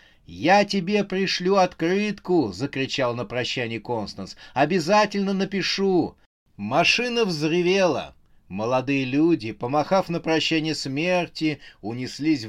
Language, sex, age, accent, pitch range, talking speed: Russian, male, 30-49, native, 110-160 Hz, 95 wpm